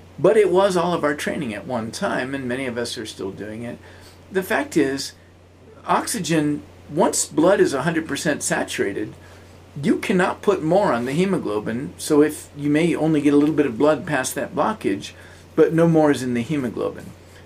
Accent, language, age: American, English, 50-69